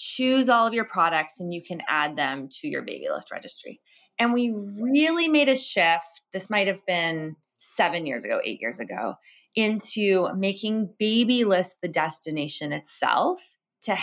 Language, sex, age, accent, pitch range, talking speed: English, female, 20-39, American, 170-220 Hz, 165 wpm